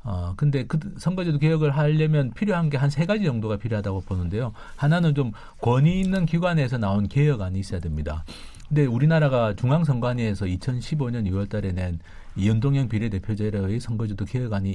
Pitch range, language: 95-145 Hz, Korean